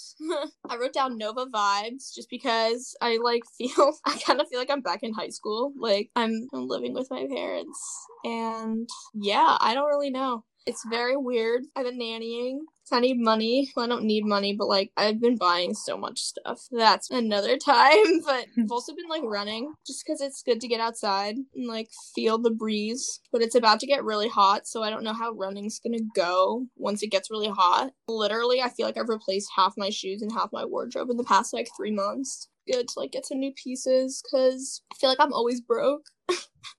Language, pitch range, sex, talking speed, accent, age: English, 220-275 Hz, female, 210 wpm, American, 10-29